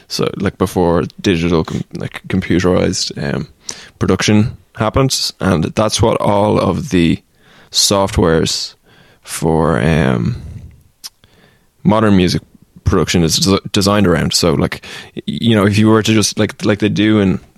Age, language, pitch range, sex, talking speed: 20-39, English, 85-105 Hz, male, 135 wpm